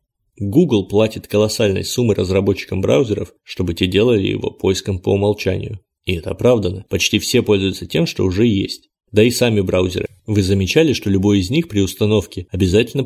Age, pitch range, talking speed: 30-49, 95-105 Hz, 165 wpm